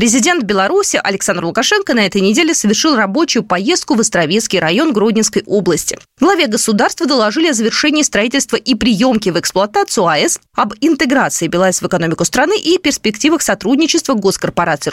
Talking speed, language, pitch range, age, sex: 145 wpm, Russian, 195-310 Hz, 20-39, female